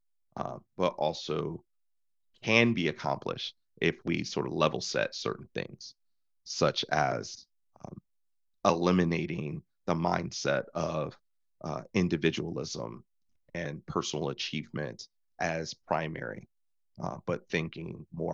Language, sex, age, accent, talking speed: English, male, 30-49, American, 105 wpm